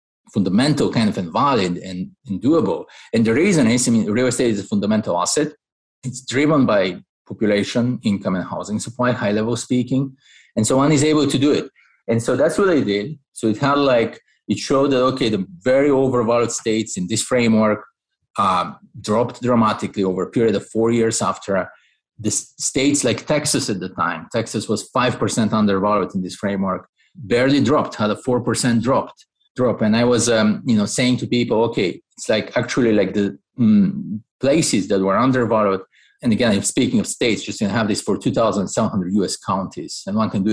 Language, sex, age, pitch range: English, male, 30-49, 105-130 Hz